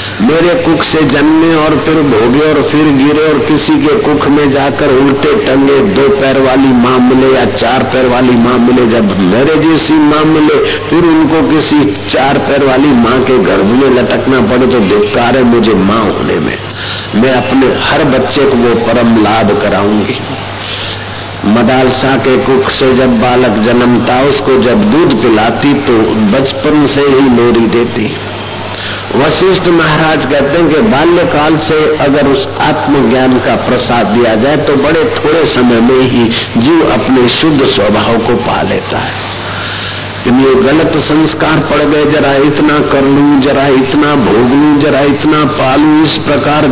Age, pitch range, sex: 50-69, 115-150 Hz, male